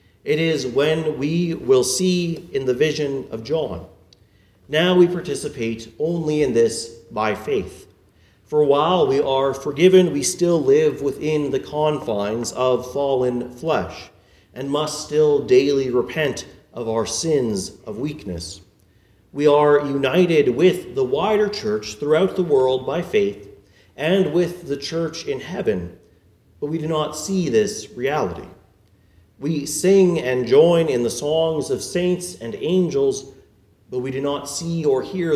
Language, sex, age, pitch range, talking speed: English, male, 40-59, 115-165 Hz, 145 wpm